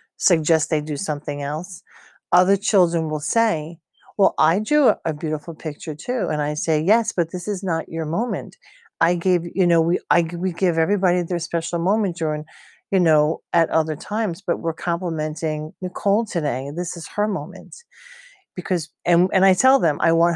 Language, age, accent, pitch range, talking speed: English, 40-59, American, 160-200 Hz, 185 wpm